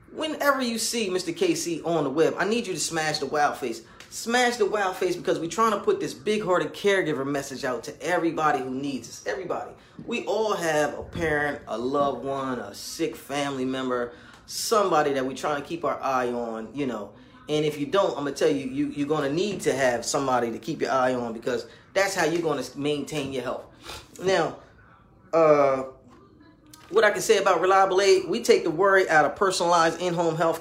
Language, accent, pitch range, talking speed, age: English, American, 145-200 Hz, 210 wpm, 30-49